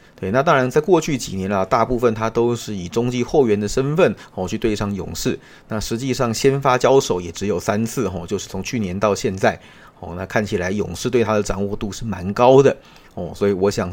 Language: Chinese